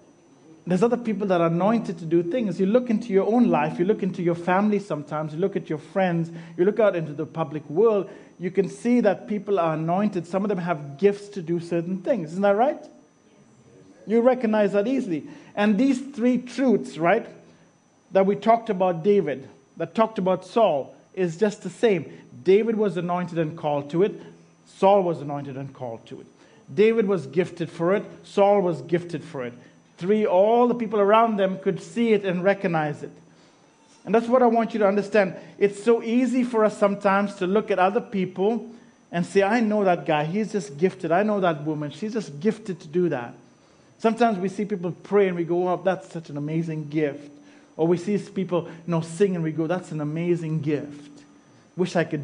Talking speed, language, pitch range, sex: 200 wpm, English, 165-215 Hz, male